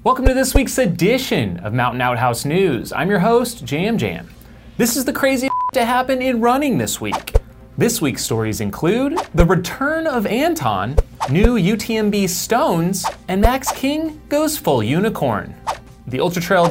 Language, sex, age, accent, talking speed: English, male, 30-49, American, 160 wpm